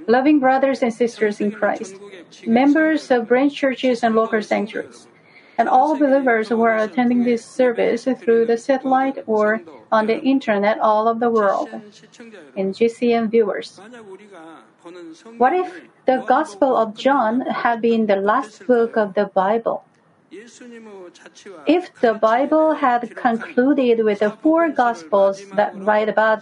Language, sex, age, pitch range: Korean, female, 40-59, 210-260 Hz